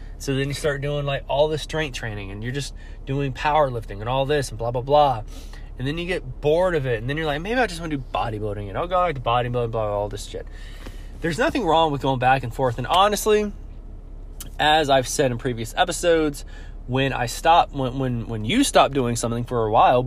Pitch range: 115-145 Hz